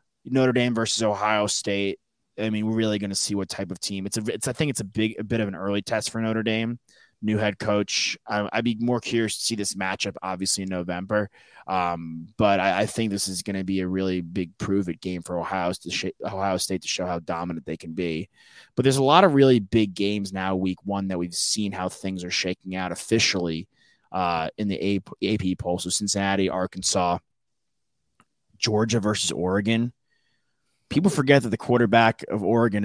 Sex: male